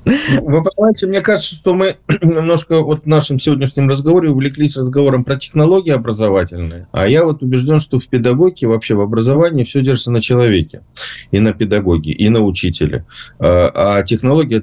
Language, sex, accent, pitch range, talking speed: Russian, male, native, 90-115 Hz, 160 wpm